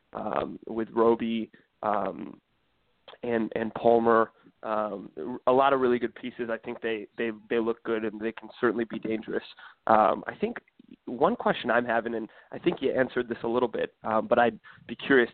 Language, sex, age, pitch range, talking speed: English, male, 20-39, 115-130 Hz, 190 wpm